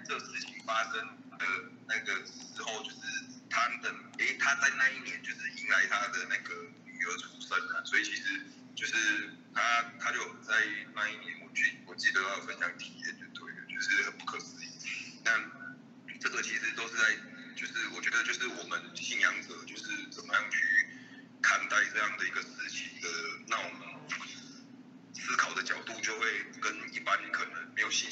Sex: male